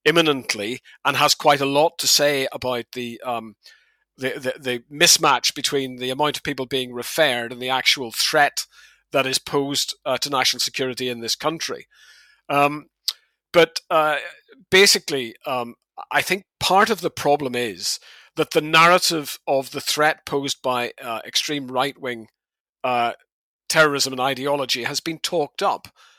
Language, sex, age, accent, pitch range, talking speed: English, male, 50-69, British, 130-160 Hz, 155 wpm